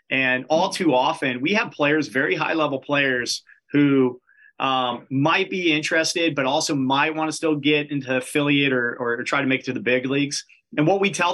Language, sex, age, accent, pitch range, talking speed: English, male, 30-49, American, 130-155 Hz, 200 wpm